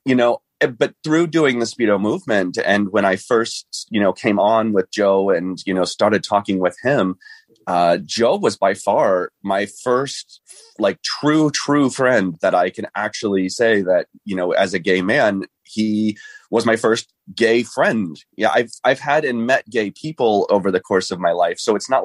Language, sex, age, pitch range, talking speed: English, male, 30-49, 100-130 Hz, 195 wpm